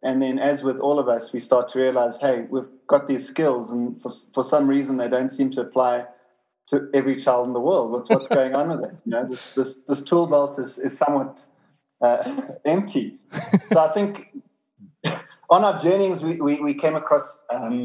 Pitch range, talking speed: 125-150 Hz, 205 wpm